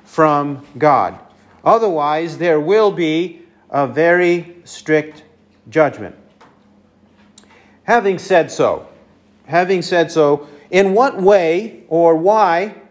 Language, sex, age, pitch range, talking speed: English, male, 50-69, 155-190 Hz, 100 wpm